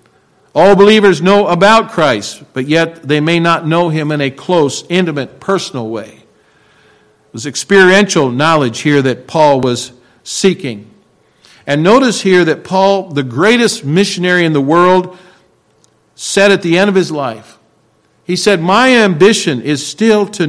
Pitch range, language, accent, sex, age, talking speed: 130-185 Hz, English, American, male, 50-69, 150 wpm